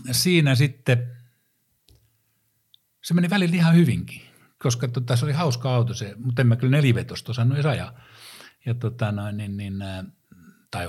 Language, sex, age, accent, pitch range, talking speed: Finnish, male, 60-79, native, 110-130 Hz, 155 wpm